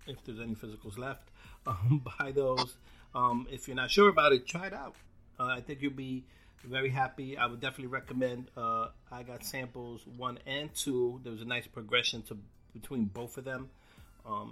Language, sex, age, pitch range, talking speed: English, male, 30-49, 110-130 Hz, 195 wpm